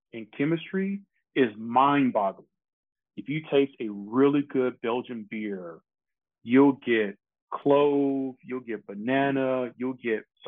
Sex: male